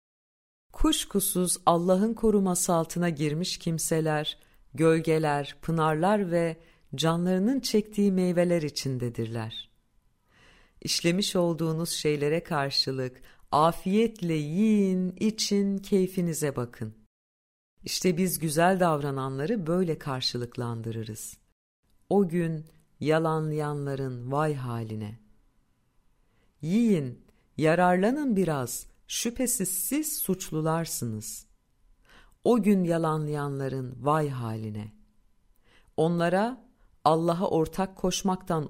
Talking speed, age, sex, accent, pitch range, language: 75 wpm, 50-69, female, native, 125-185 Hz, Turkish